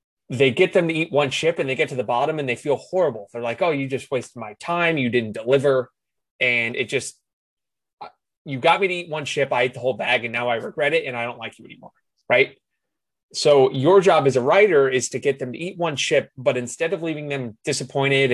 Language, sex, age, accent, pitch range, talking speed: English, male, 20-39, American, 125-165 Hz, 245 wpm